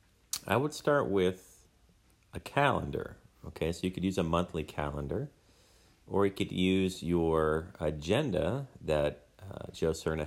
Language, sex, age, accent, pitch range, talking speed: English, male, 40-59, American, 80-105 Hz, 140 wpm